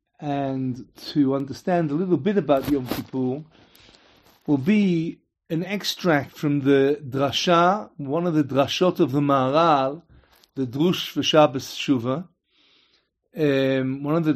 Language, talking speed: English, 130 wpm